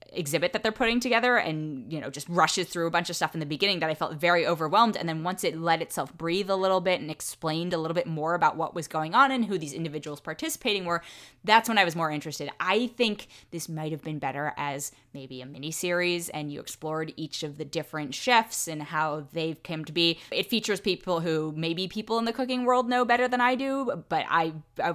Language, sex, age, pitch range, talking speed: English, female, 10-29, 155-200 Hz, 240 wpm